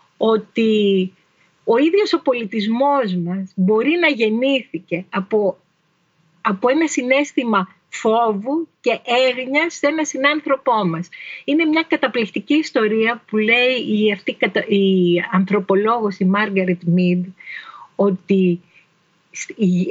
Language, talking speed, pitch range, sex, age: Greek, 105 wpm, 185-260 Hz, female, 40-59